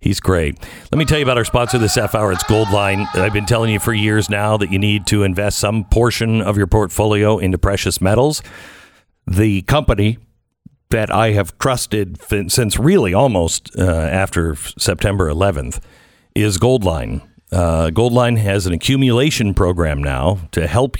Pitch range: 90-120 Hz